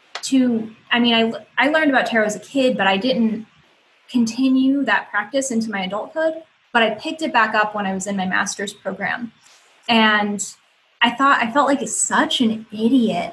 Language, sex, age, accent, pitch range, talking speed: English, female, 10-29, American, 210-255 Hz, 190 wpm